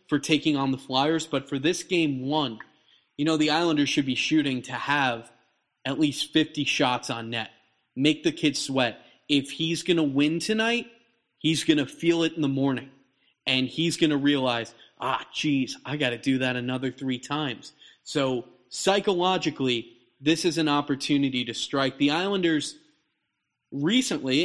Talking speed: 160 wpm